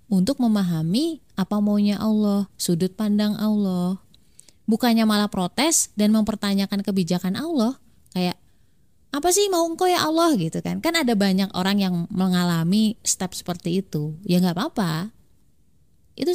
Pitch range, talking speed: 185-245 Hz, 135 wpm